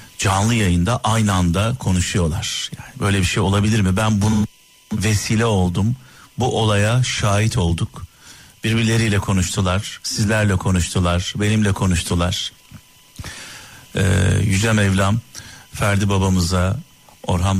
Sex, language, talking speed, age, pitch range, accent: male, Turkish, 105 wpm, 50-69, 95-125 Hz, native